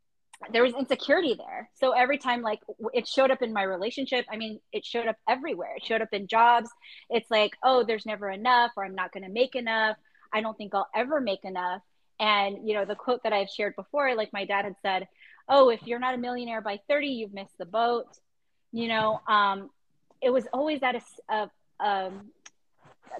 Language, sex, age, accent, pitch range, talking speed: English, female, 20-39, American, 205-255 Hz, 210 wpm